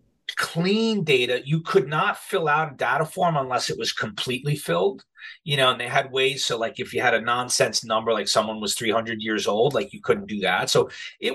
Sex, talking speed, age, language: male, 220 wpm, 40-59, English